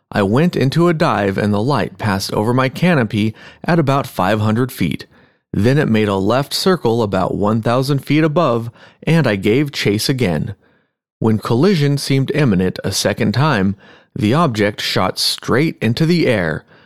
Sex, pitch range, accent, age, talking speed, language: male, 105-140 Hz, American, 30-49, 160 wpm, English